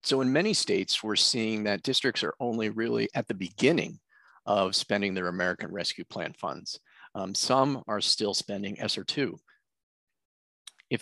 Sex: male